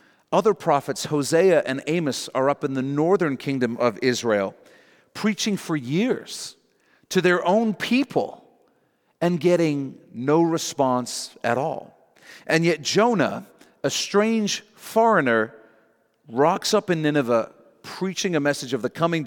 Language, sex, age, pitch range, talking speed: English, male, 50-69, 135-195 Hz, 130 wpm